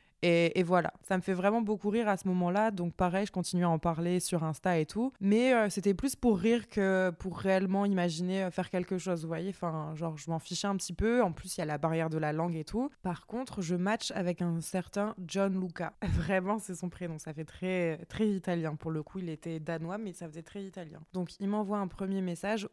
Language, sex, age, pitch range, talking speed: French, female, 20-39, 175-200 Hz, 245 wpm